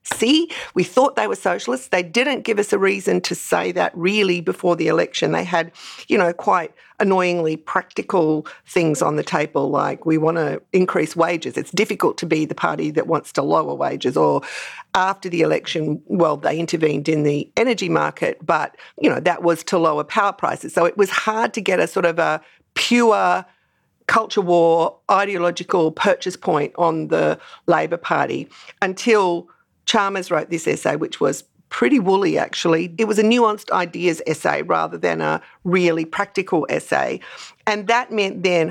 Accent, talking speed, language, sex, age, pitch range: Australian, 175 wpm, English, female, 50-69, 165-205 Hz